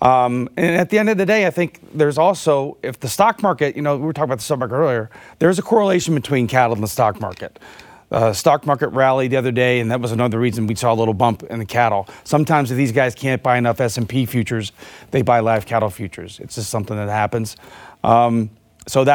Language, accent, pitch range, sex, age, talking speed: English, American, 120-155 Hz, male, 30-49, 235 wpm